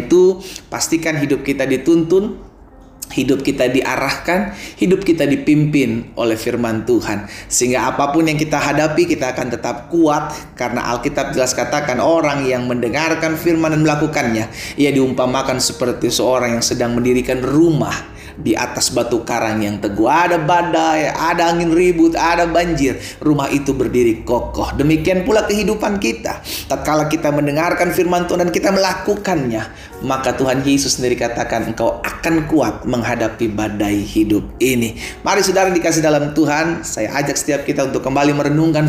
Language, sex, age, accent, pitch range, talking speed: Indonesian, male, 30-49, native, 120-165 Hz, 145 wpm